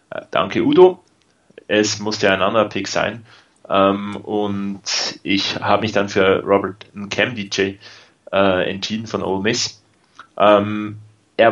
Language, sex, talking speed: German, male, 120 wpm